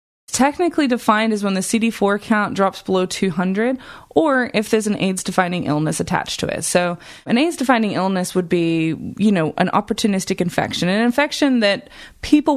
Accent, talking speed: American, 160 wpm